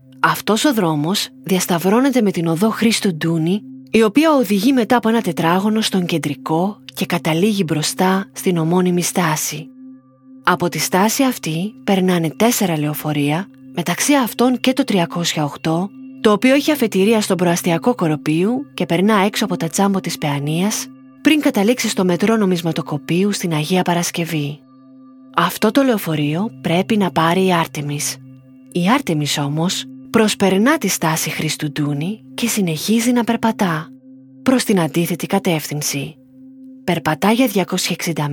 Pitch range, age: 160-230 Hz, 20-39